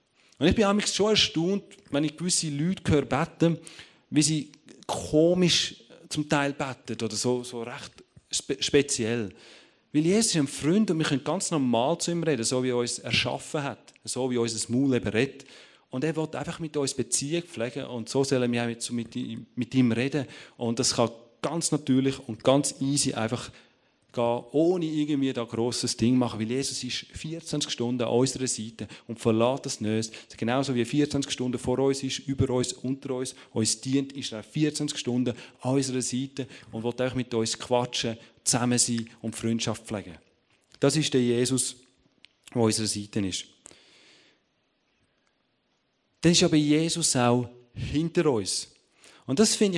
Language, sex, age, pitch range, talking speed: German, male, 30-49, 120-150 Hz, 175 wpm